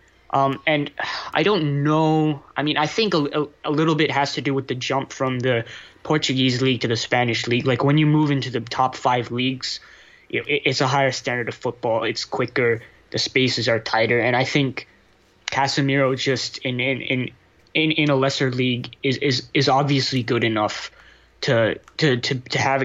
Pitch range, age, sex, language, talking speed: 125-145 Hz, 20-39, male, English, 195 wpm